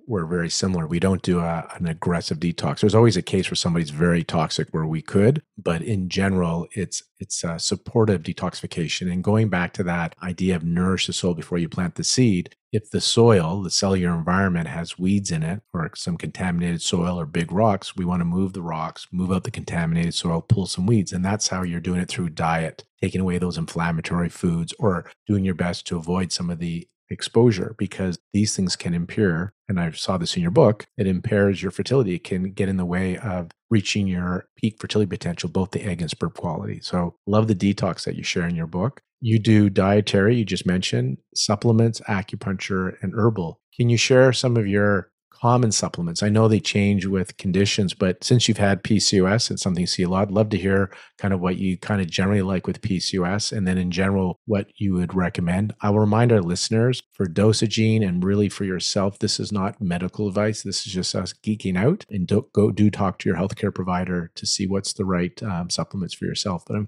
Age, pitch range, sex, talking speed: 40-59, 90-105 Hz, male, 215 wpm